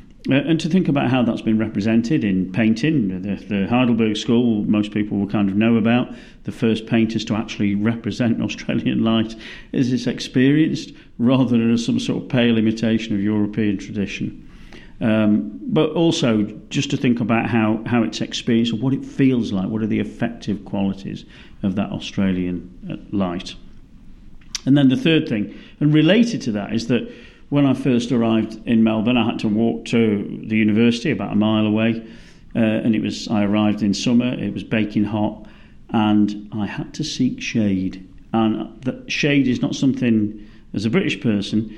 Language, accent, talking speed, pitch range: English, British, 175 wpm, 105-125 Hz